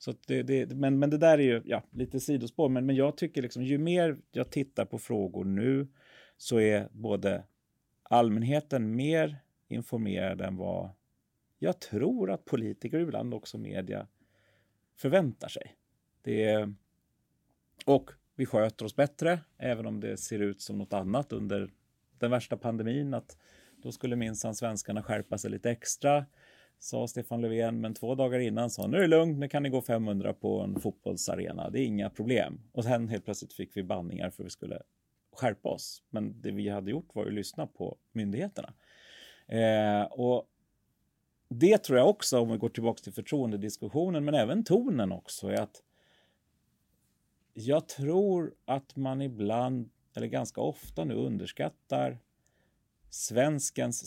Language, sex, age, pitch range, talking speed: Swedish, male, 30-49, 105-140 Hz, 160 wpm